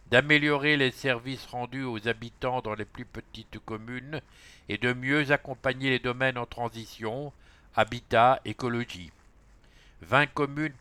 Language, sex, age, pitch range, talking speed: English, male, 60-79, 110-135 Hz, 130 wpm